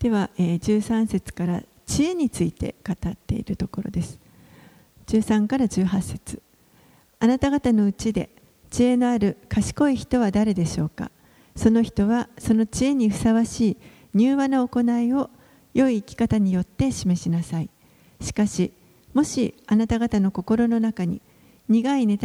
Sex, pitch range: female, 195-240 Hz